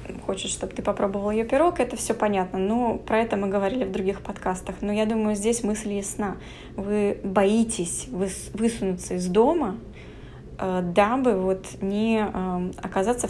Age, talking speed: 20-39, 145 wpm